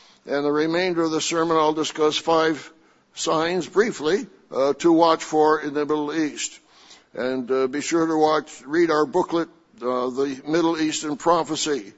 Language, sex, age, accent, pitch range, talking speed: English, male, 60-79, American, 155-180 Hz, 170 wpm